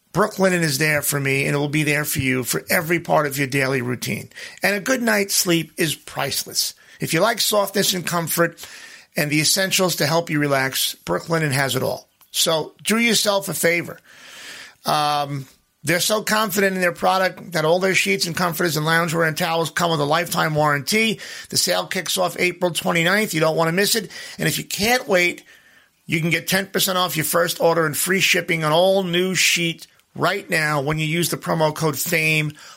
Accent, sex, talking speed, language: American, male, 205 wpm, English